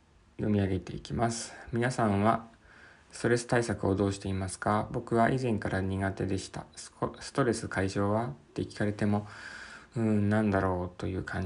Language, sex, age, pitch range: Japanese, male, 20-39, 95-115 Hz